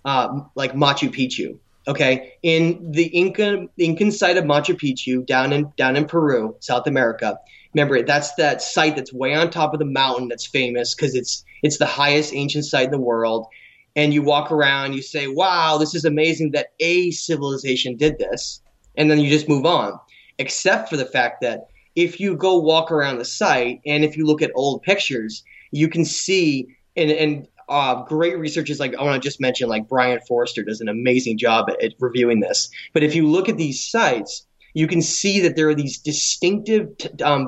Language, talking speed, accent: English, 200 wpm, American